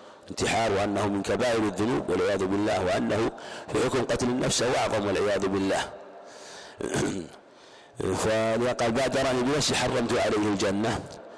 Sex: male